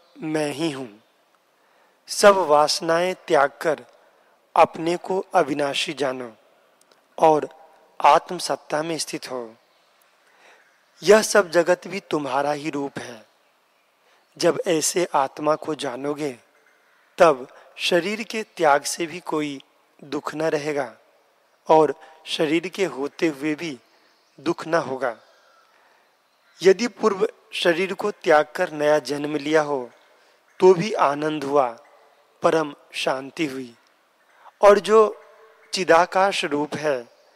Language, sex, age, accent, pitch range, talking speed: Hindi, male, 30-49, native, 145-185 Hz, 110 wpm